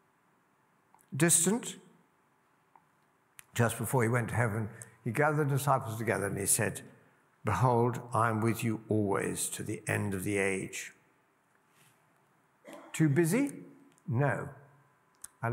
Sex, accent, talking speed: male, British, 120 wpm